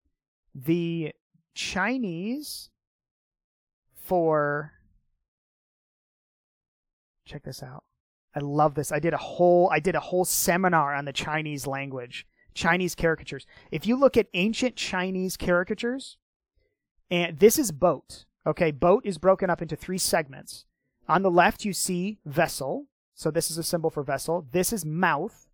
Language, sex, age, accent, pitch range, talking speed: English, male, 30-49, American, 150-190 Hz, 140 wpm